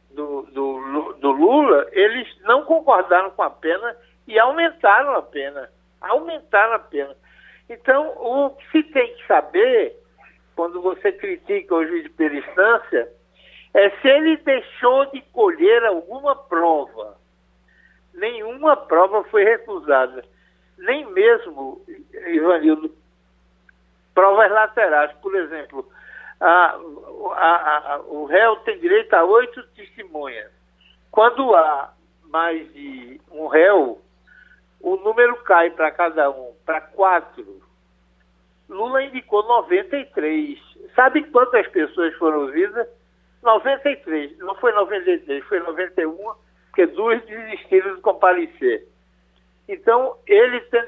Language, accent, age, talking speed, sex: Portuguese, Brazilian, 60-79, 115 wpm, male